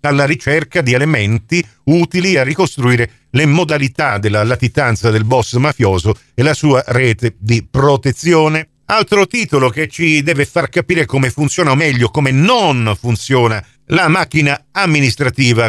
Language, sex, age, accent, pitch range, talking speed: Italian, male, 50-69, native, 115-155 Hz, 140 wpm